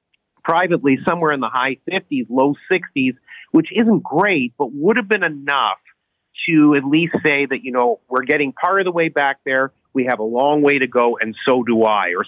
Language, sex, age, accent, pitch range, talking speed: English, male, 40-59, American, 120-155 Hz, 210 wpm